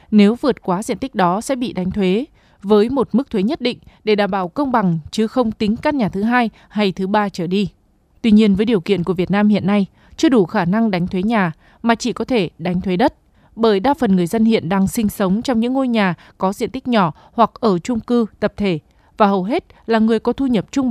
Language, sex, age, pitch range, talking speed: Vietnamese, female, 20-39, 195-240 Hz, 255 wpm